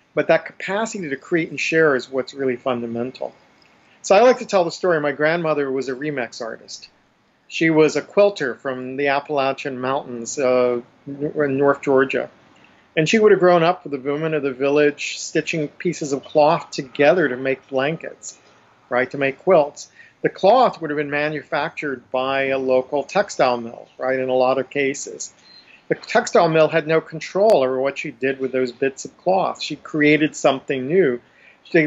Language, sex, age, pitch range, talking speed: English, male, 50-69, 130-160 Hz, 185 wpm